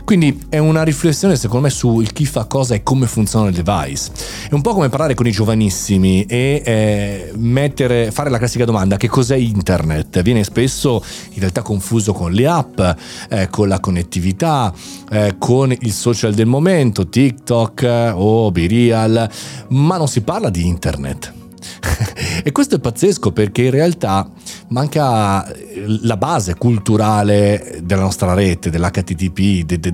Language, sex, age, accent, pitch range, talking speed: Italian, male, 40-59, native, 95-135 Hz, 155 wpm